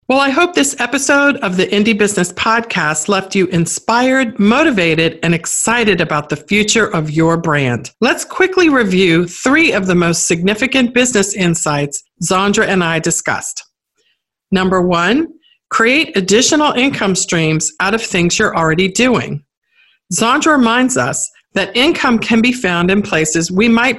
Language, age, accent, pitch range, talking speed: English, 50-69, American, 165-240 Hz, 150 wpm